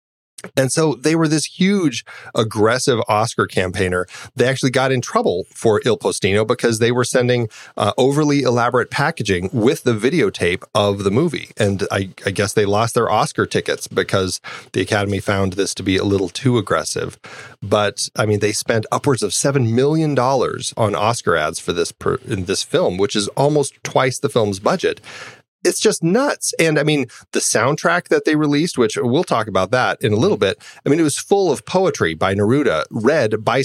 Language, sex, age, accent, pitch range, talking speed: English, male, 30-49, American, 105-150 Hz, 185 wpm